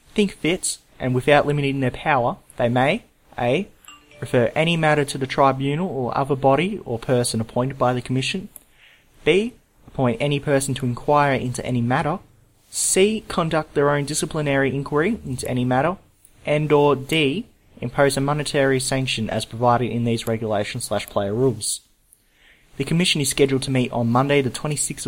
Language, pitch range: English, 120-150 Hz